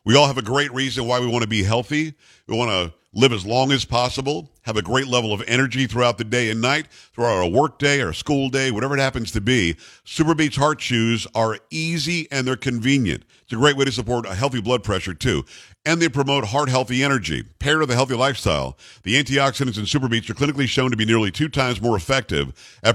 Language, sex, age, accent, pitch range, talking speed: English, male, 50-69, American, 110-135 Hz, 225 wpm